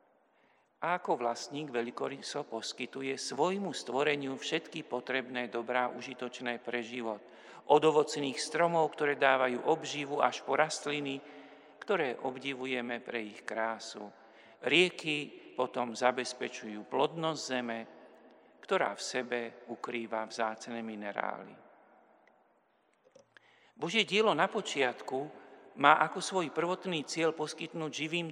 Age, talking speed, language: 50-69, 105 wpm, Slovak